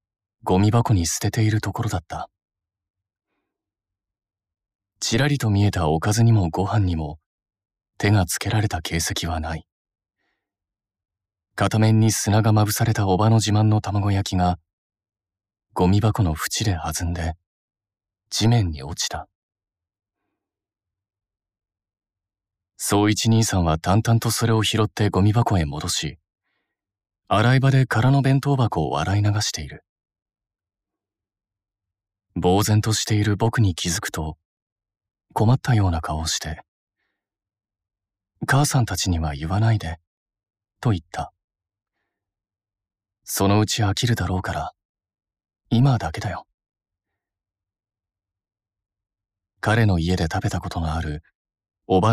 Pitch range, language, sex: 95-110 Hz, Japanese, male